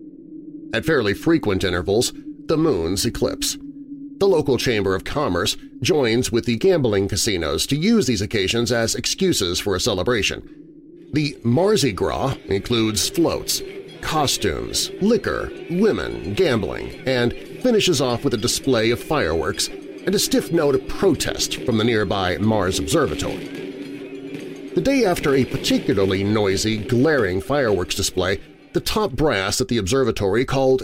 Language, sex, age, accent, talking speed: English, male, 40-59, American, 135 wpm